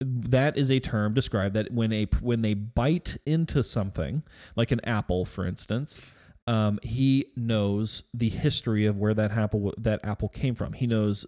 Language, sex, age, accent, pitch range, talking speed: English, male, 30-49, American, 100-125 Hz, 175 wpm